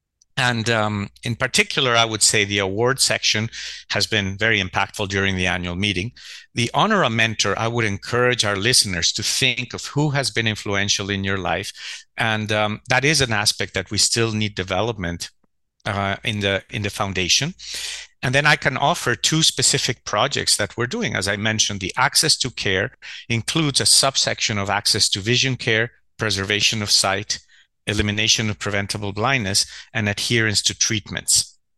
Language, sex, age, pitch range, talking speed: English, male, 50-69, 100-125 Hz, 170 wpm